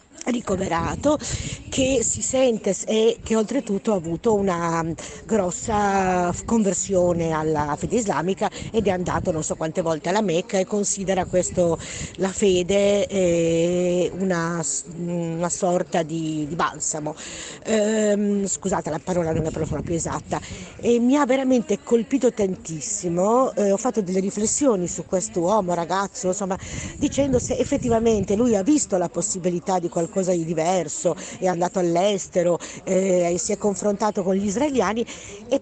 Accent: native